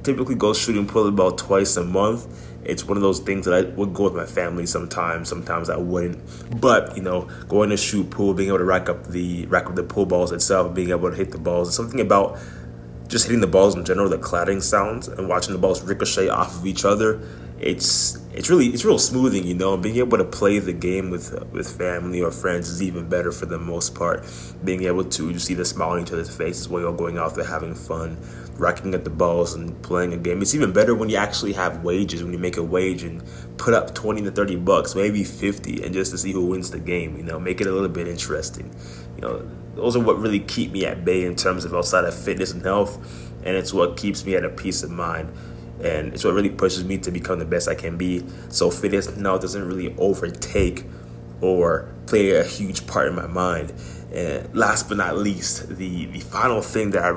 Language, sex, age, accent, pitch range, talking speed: English, male, 20-39, American, 80-95 Hz, 240 wpm